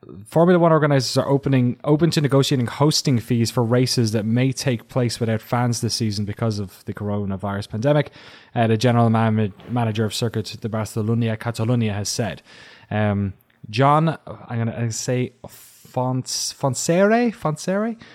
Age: 20-39